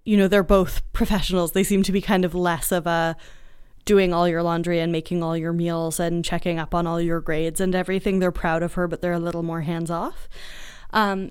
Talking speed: 230 wpm